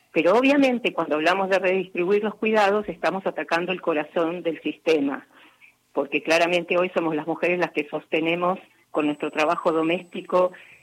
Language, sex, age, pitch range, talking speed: Spanish, female, 40-59, 170-220 Hz, 150 wpm